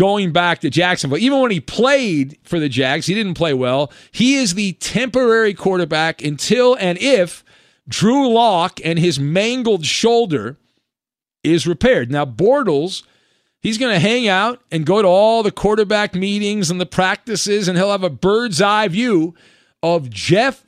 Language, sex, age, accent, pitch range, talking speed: English, male, 40-59, American, 160-215 Hz, 170 wpm